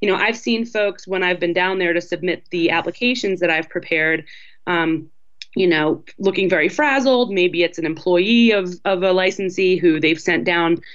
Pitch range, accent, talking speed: 170-205 Hz, American, 190 wpm